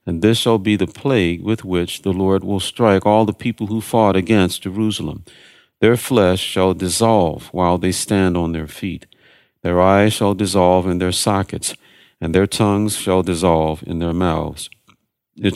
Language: English